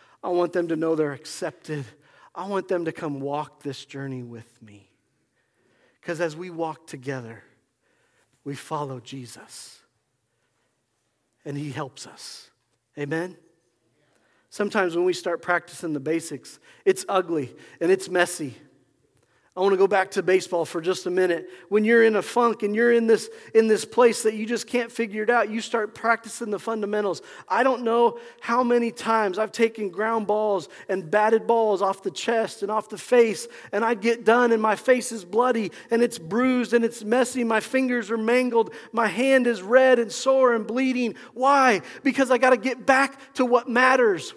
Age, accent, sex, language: 40-59, American, male, English